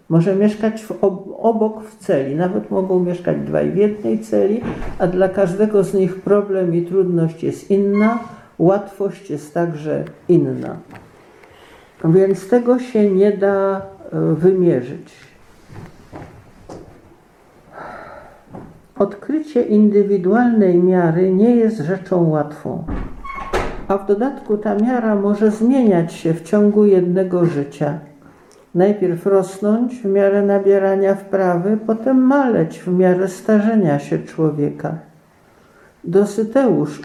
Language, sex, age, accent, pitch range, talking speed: Polish, male, 50-69, native, 170-205 Hz, 105 wpm